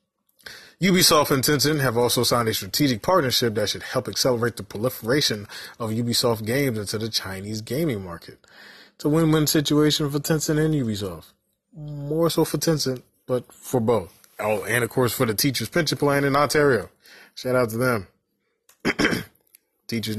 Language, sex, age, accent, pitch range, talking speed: English, male, 20-39, American, 105-145 Hz, 160 wpm